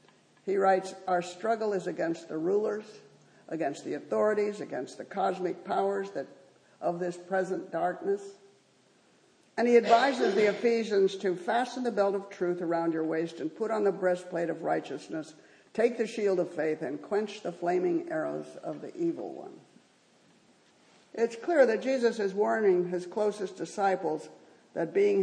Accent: American